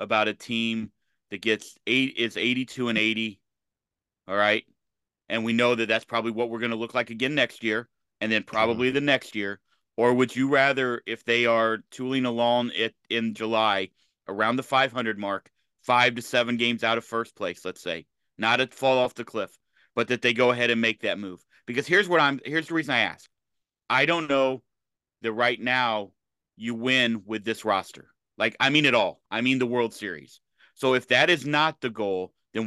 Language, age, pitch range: English, 40-59, 110-125 Hz